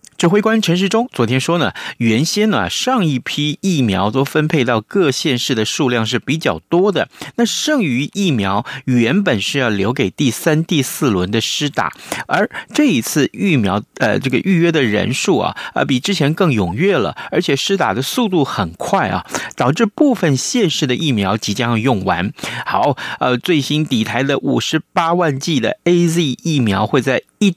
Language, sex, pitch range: Chinese, male, 120-170 Hz